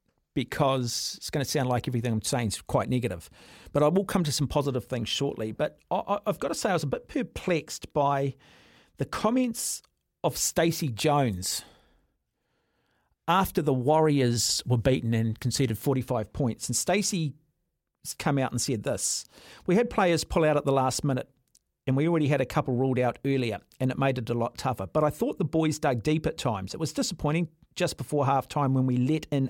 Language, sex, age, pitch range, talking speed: English, male, 50-69, 125-155 Hz, 200 wpm